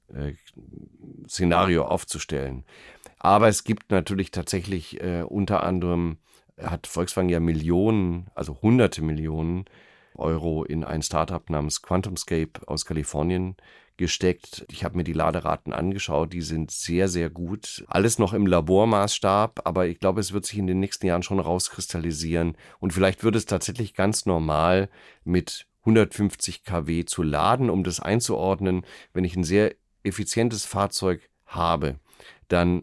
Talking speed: 140 wpm